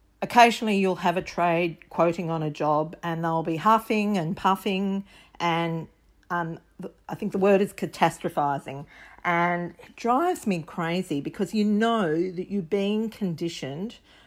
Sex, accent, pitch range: female, Australian, 160-200 Hz